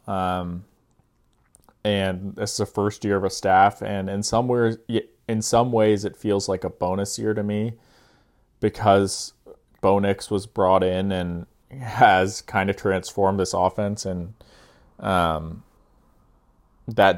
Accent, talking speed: American, 140 wpm